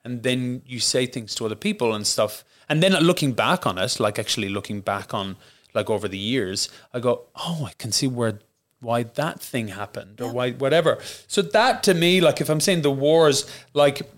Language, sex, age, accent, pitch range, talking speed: English, male, 30-49, Irish, 110-140 Hz, 210 wpm